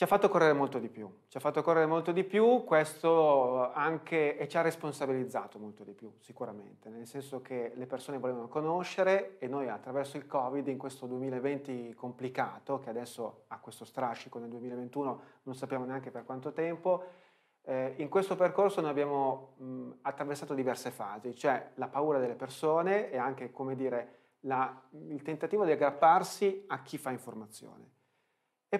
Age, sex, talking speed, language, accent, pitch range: 30-49, male, 170 wpm, Italian, native, 125-150 Hz